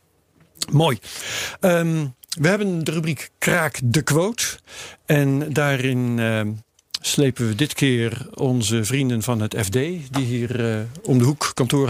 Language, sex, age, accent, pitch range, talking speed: Dutch, male, 50-69, Dutch, 120-165 Hz, 140 wpm